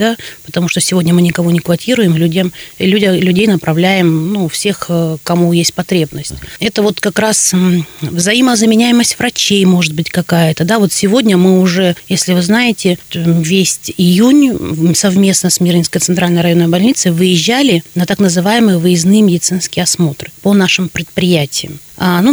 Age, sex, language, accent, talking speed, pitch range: 30-49, female, Russian, native, 140 wpm, 170-205 Hz